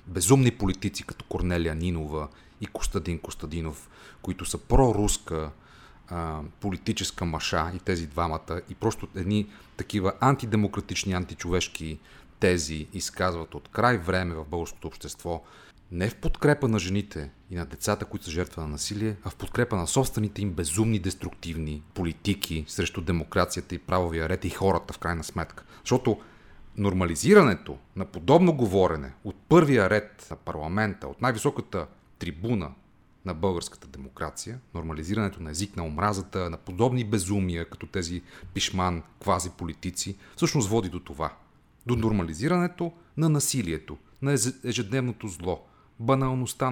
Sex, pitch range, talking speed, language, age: male, 85-110 Hz, 130 wpm, Bulgarian, 30-49